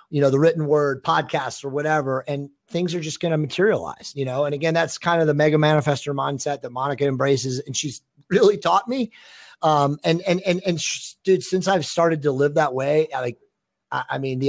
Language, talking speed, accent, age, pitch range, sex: English, 210 wpm, American, 30-49, 125-165 Hz, male